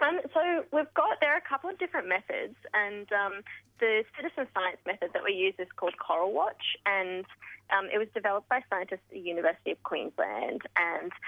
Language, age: English, 20-39